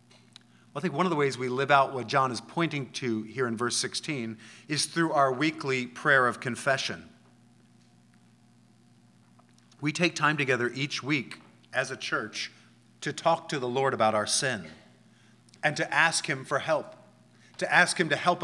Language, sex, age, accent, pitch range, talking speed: English, male, 40-59, American, 125-165 Hz, 175 wpm